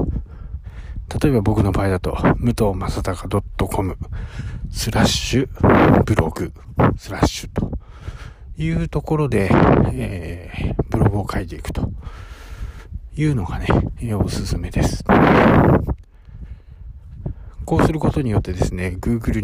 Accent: native